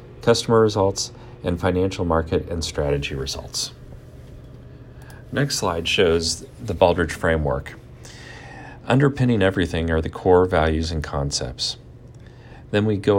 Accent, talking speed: American, 115 wpm